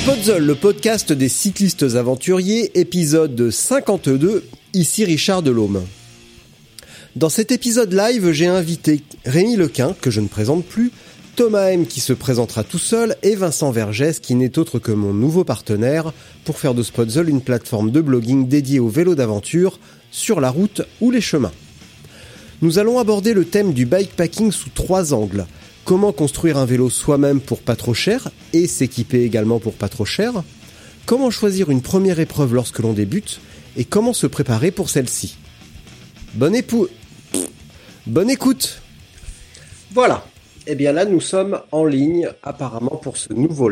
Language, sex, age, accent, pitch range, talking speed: French, male, 40-59, French, 115-185 Hz, 155 wpm